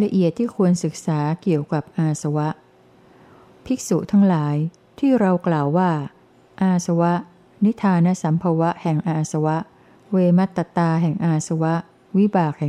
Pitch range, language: 160-185 Hz, Thai